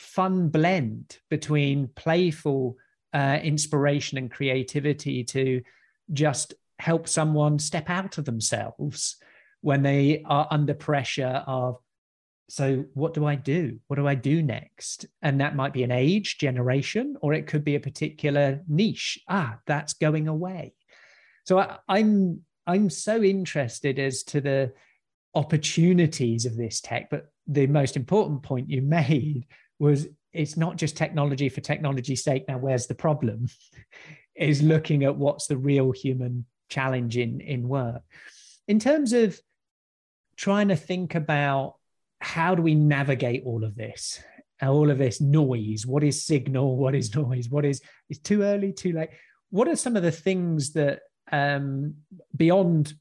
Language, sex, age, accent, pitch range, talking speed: English, male, 40-59, British, 135-160 Hz, 150 wpm